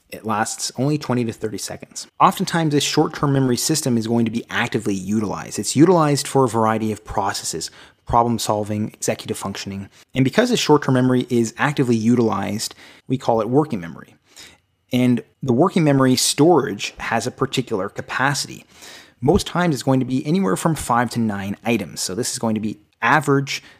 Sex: male